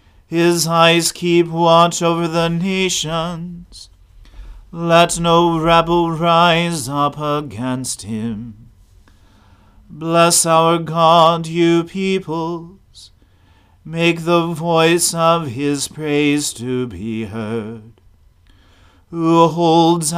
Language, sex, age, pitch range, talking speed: English, male, 40-59, 110-170 Hz, 90 wpm